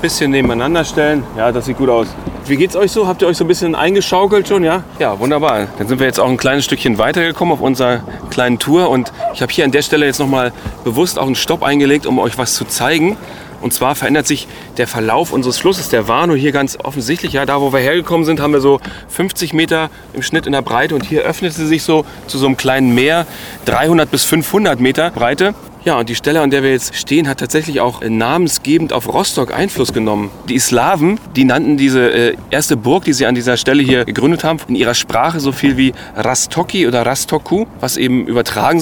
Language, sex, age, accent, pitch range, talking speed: German, male, 30-49, German, 125-165 Hz, 225 wpm